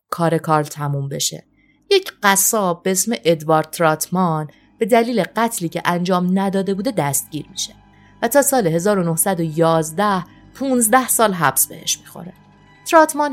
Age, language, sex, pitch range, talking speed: 30-49, Persian, female, 155-205 Hz, 130 wpm